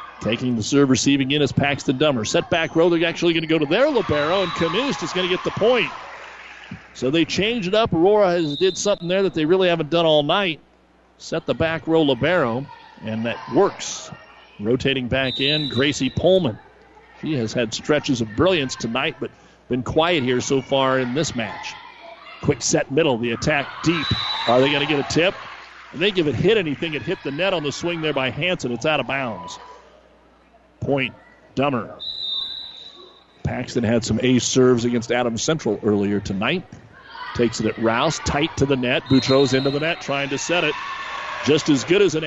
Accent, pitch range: American, 130-170 Hz